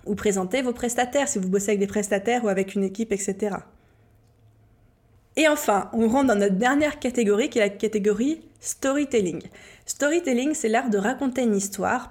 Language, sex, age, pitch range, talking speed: French, female, 20-39, 195-250 Hz, 175 wpm